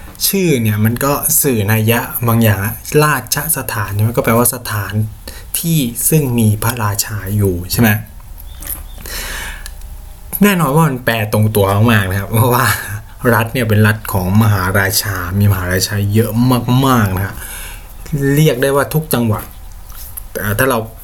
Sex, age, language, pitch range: male, 20-39, Thai, 95-115 Hz